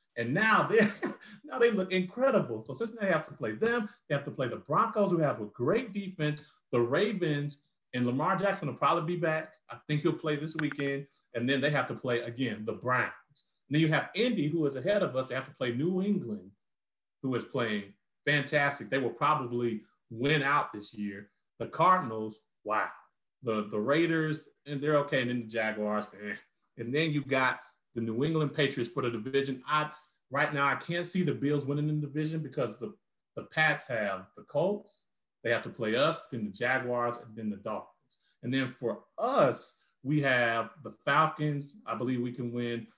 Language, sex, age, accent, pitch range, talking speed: English, male, 40-59, American, 125-165 Hz, 200 wpm